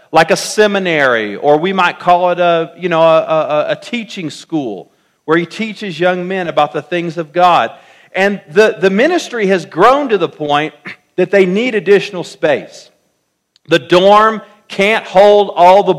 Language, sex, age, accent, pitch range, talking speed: English, male, 50-69, American, 170-215 Hz, 175 wpm